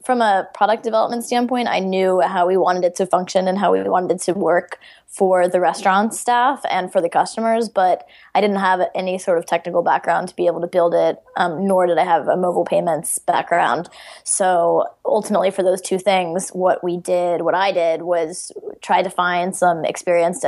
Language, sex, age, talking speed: English, female, 20-39, 205 wpm